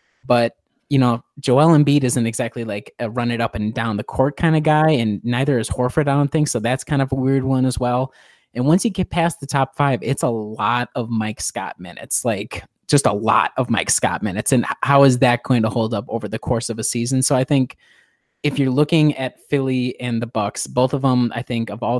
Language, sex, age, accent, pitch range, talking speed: English, male, 20-39, American, 110-135 Hz, 245 wpm